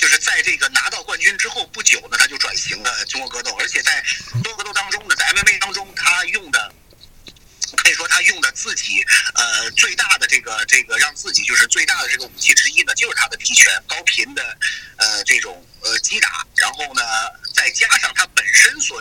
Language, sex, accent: Chinese, male, native